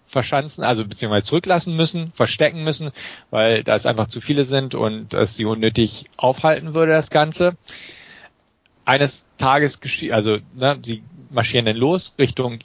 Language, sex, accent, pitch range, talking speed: German, male, German, 115-145 Hz, 150 wpm